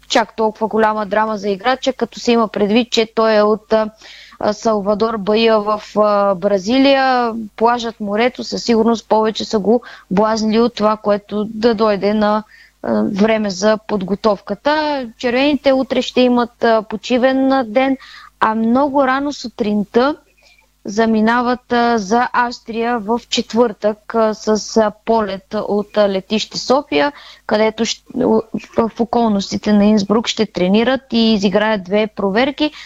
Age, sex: 20-39, female